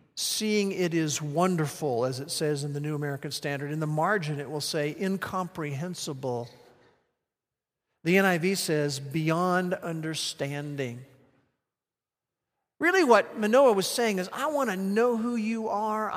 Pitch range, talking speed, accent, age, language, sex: 150-210 Hz, 135 wpm, American, 50-69, English, male